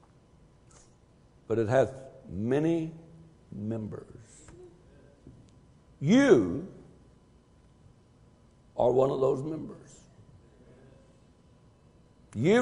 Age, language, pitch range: 60-79, English, 140-220 Hz